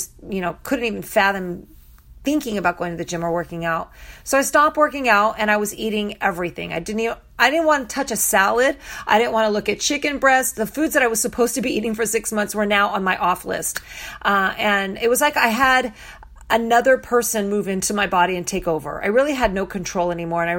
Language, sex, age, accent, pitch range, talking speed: English, female, 40-59, American, 195-240 Hz, 245 wpm